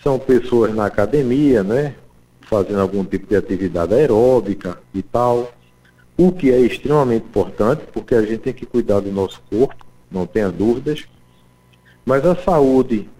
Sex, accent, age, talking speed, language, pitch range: male, Brazilian, 50-69, 150 wpm, Portuguese, 100-155 Hz